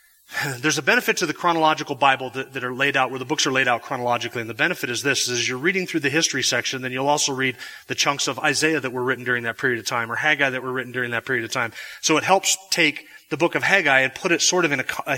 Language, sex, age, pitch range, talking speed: English, male, 30-49, 135-155 Hz, 290 wpm